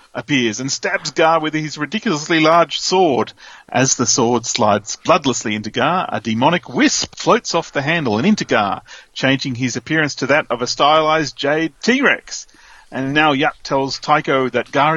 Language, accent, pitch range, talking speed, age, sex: English, Australian, 125-175 Hz, 170 wpm, 40-59, male